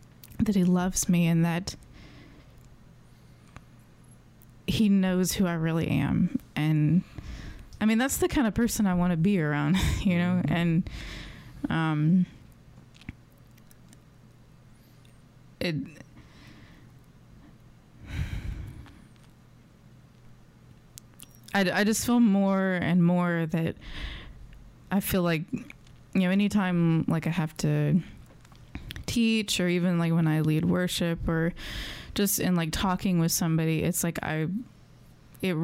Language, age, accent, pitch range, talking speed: English, 20-39, American, 155-185 Hz, 115 wpm